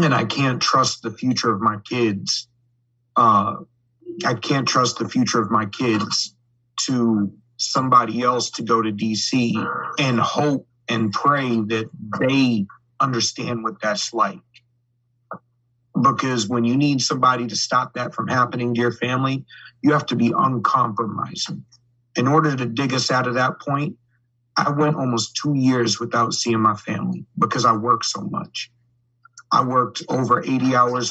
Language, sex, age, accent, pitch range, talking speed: English, male, 30-49, American, 110-125 Hz, 155 wpm